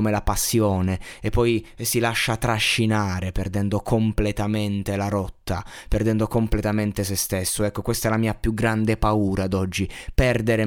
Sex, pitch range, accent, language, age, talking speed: male, 105-120 Hz, native, Italian, 20-39, 150 wpm